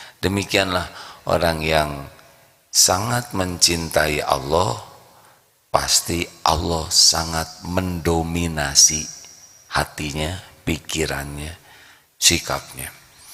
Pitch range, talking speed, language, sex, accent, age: 75-90 Hz, 60 wpm, Indonesian, male, native, 40-59